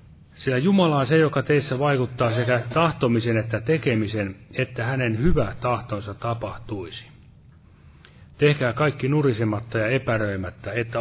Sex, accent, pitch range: male, native, 110-130 Hz